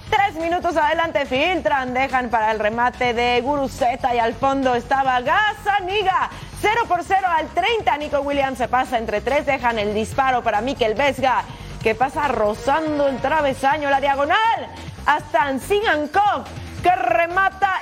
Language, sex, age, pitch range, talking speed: Spanish, female, 30-49, 255-355 Hz, 145 wpm